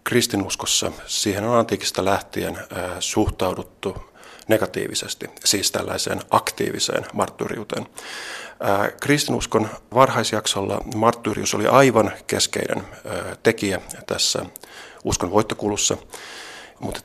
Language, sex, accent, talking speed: Finnish, male, native, 75 wpm